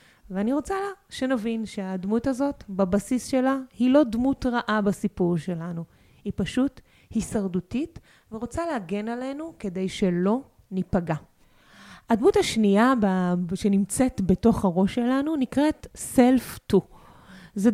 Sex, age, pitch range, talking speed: female, 30-49, 195-250 Hz, 110 wpm